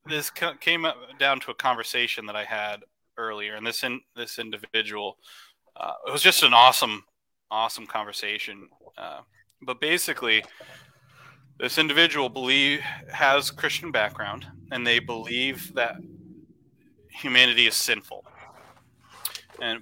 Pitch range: 110-135 Hz